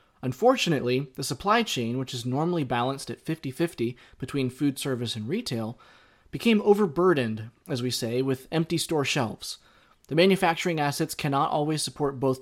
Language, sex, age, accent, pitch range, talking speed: English, male, 30-49, American, 125-165 Hz, 150 wpm